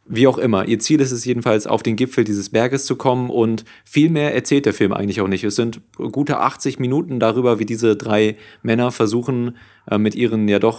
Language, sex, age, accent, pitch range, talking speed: German, male, 30-49, German, 110-125 Hz, 220 wpm